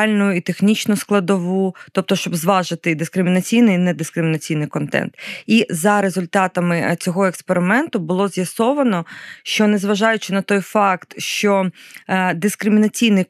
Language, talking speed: English, 115 wpm